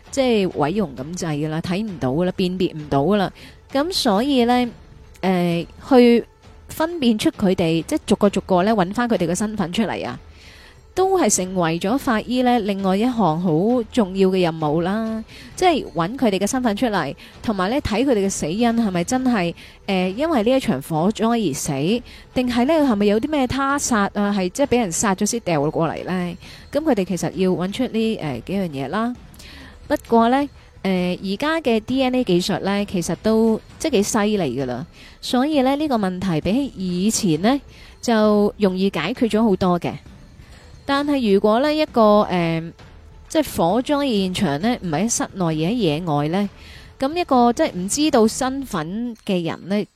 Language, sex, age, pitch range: Chinese, female, 20-39, 180-245 Hz